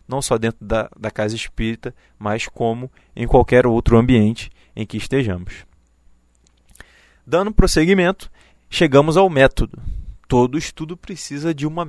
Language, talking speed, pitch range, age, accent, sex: Portuguese, 135 wpm, 105-145 Hz, 20-39, Brazilian, male